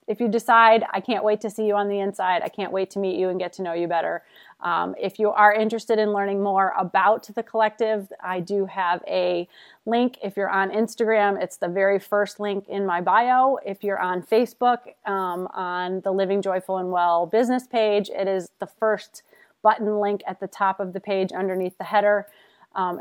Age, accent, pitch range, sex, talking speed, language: 30-49, American, 190-230 Hz, female, 210 wpm, English